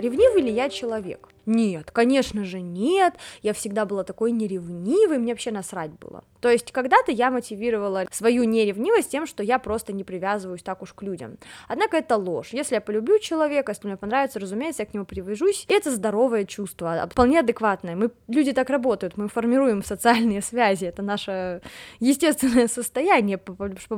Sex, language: female, Russian